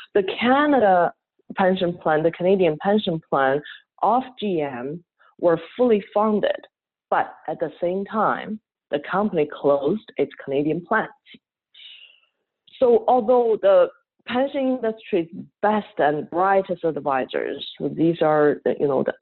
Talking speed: 120 wpm